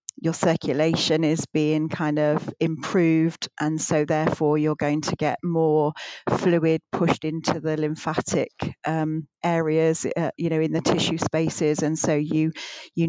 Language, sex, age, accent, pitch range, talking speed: English, female, 40-59, British, 155-170 Hz, 150 wpm